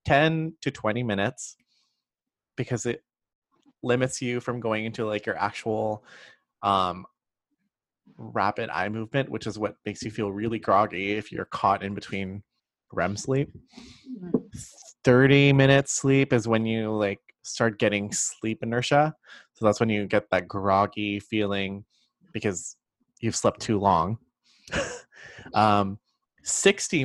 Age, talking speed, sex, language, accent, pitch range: 20-39, 130 wpm, male, English, American, 105-120 Hz